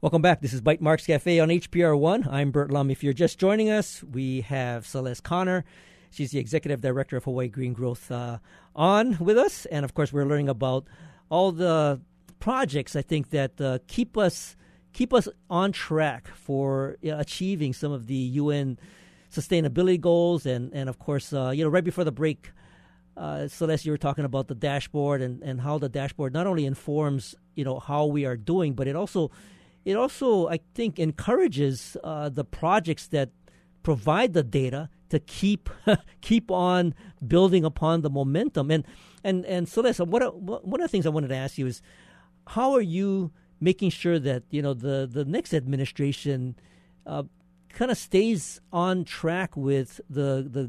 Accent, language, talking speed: American, English, 180 wpm